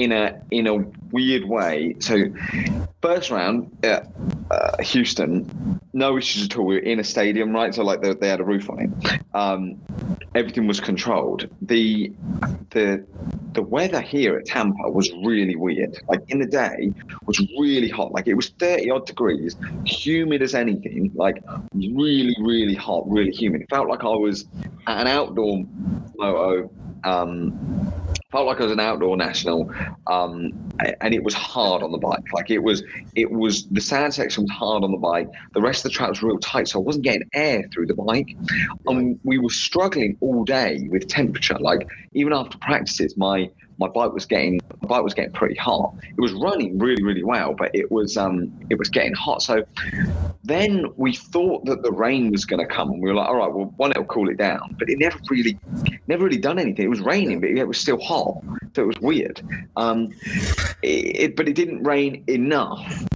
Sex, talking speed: male, 200 wpm